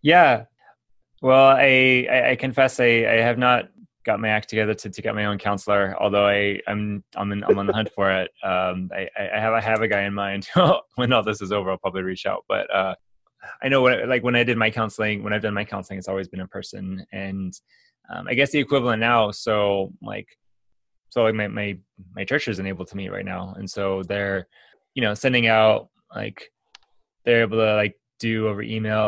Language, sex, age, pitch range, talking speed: English, male, 20-39, 95-115 Hz, 225 wpm